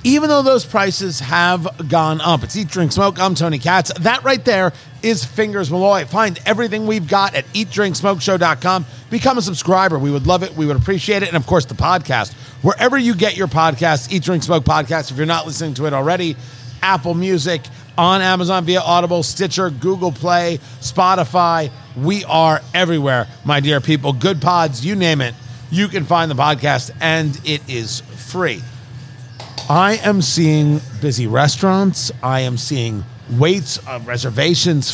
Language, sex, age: English, male, 40-59